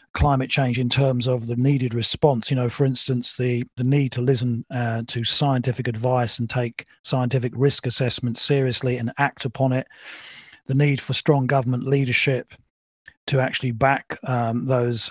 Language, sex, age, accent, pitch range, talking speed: English, male, 40-59, British, 125-140 Hz, 165 wpm